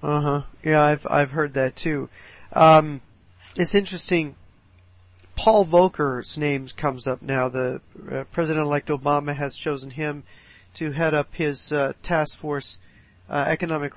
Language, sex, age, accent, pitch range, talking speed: English, male, 40-59, American, 140-155 Hz, 140 wpm